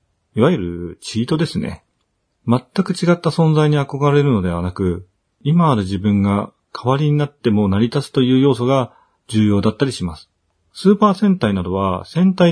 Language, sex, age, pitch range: Japanese, male, 40-59, 100-150 Hz